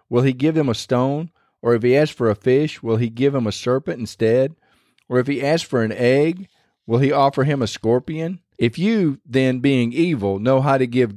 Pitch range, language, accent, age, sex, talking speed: 115-145 Hz, English, American, 40-59, male, 225 wpm